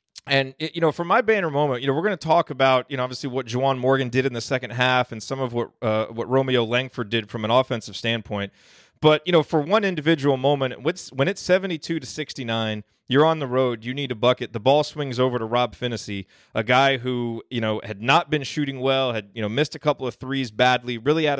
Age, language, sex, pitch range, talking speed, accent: 30-49, English, male, 120-150 Hz, 240 wpm, American